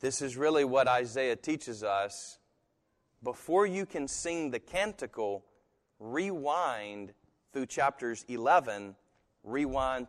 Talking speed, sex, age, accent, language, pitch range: 105 wpm, male, 40-59, American, English, 110-155 Hz